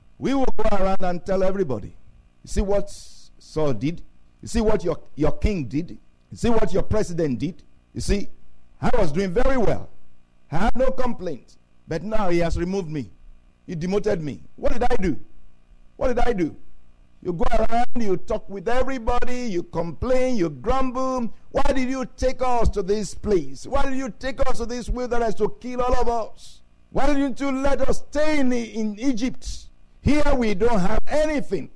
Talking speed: 185 wpm